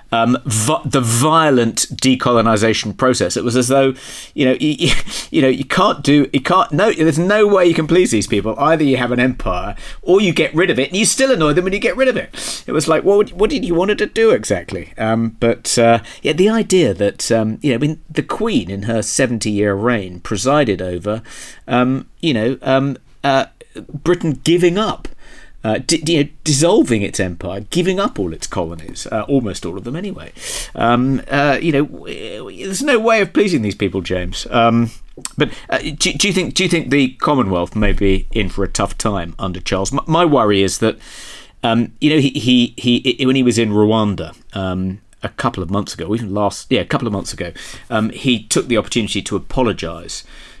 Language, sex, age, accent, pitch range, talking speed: English, male, 40-59, British, 105-155 Hz, 220 wpm